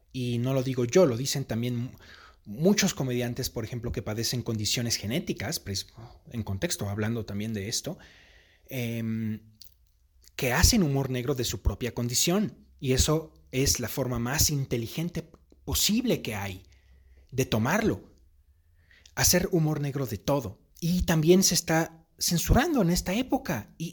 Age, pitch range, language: 30-49, 115-170 Hz, Spanish